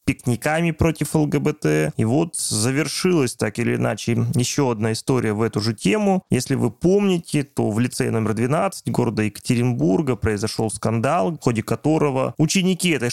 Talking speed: 150 wpm